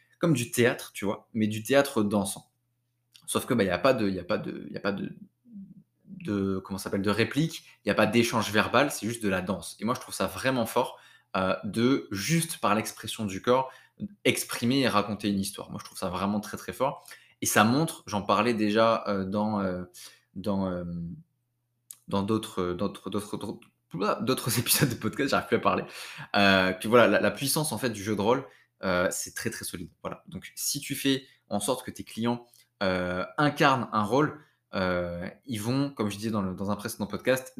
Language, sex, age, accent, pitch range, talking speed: French, male, 20-39, French, 100-125 Hz, 210 wpm